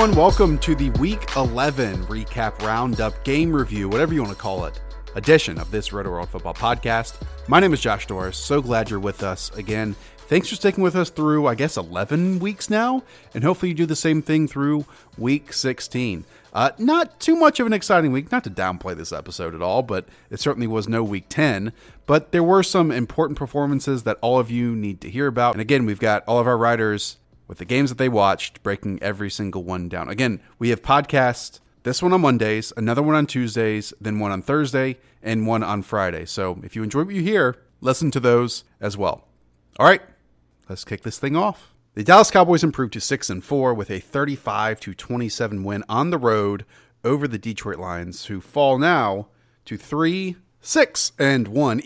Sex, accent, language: male, American, English